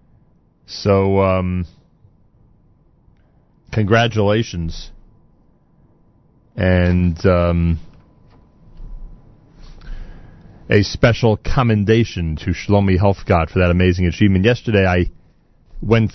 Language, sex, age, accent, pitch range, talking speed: English, male, 40-59, American, 90-115 Hz, 65 wpm